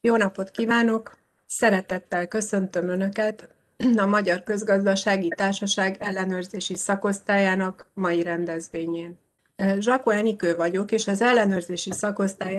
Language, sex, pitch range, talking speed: Hungarian, female, 180-210 Hz, 100 wpm